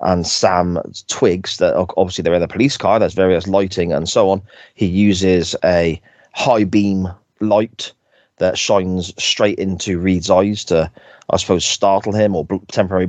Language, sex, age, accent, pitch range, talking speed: English, male, 30-49, British, 90-110 Hz, 160 wpm